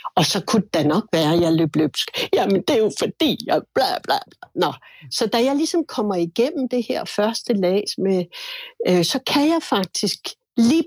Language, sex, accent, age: Danish, female, native, 60-79